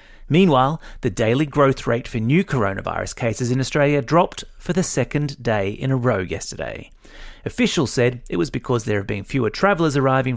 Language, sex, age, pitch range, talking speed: English, male, 30-49, 110-155 Hz, 180 wpm